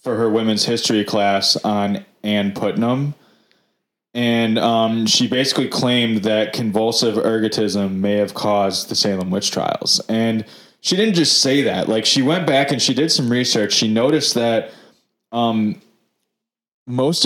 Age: 20-39